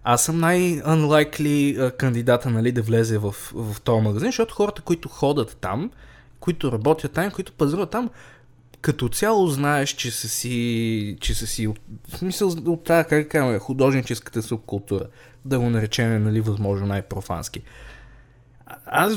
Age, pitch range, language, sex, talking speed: 20-39, 120-165 Hz, Bulgarian, male, 145 wpm